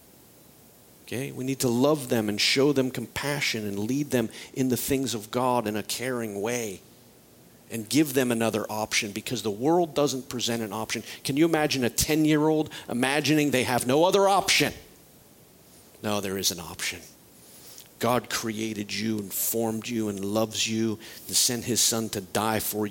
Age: 50-69